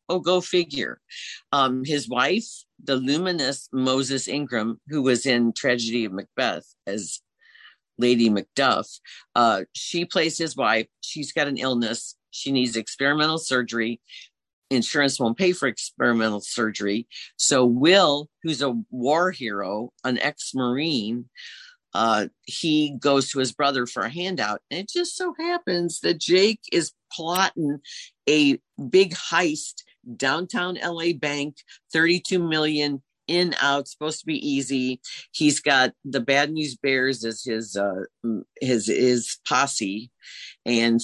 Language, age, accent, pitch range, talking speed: English, 50-69, American, 120-165 Hz, 130 wpm